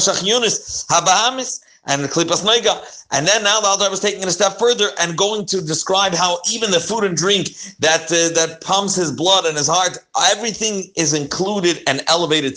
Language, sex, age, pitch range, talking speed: English, male, 40-59, 145-190 Hz, 185 wpm